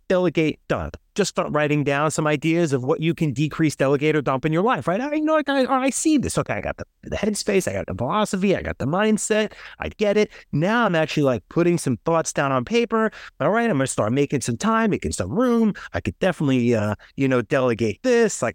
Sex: male